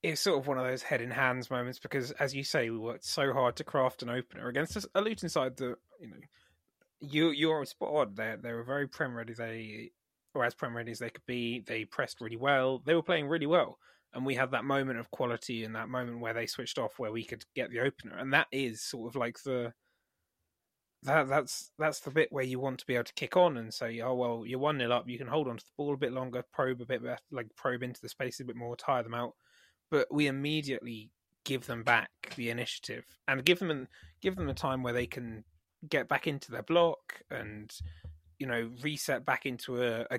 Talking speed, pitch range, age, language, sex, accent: 245 wpm, 115-140 Hz, 20-39, English, male, British